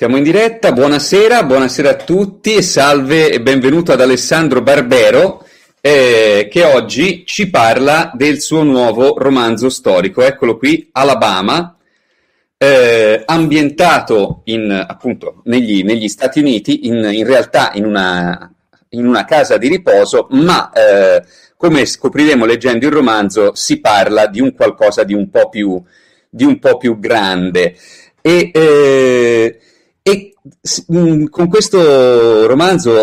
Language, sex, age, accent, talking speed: Italian, male, 40-59, native, 130 wpm